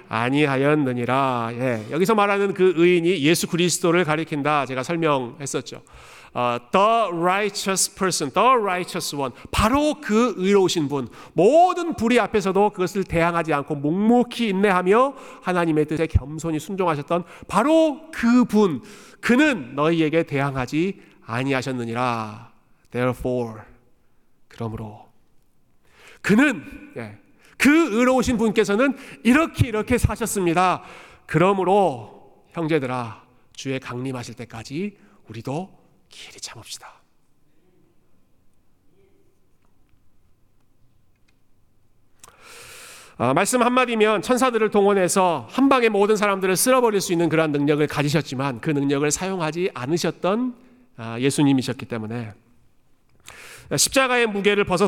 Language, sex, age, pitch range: Korean, male, 40-59, 130-205 Hz